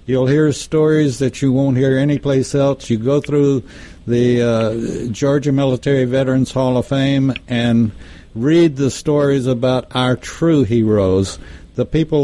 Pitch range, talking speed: 125-145 Hz, 145 wpm